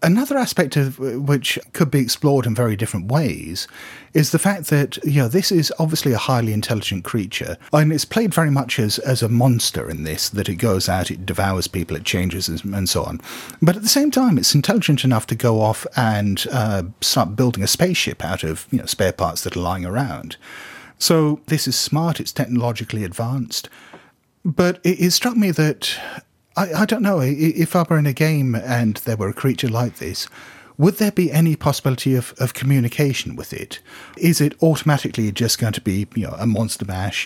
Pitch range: 110-155 Hz